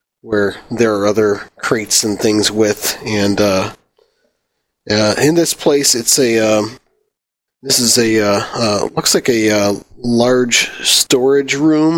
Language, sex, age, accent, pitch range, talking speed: English, male, 30-49, American, 105-120 Hz, 145 wpm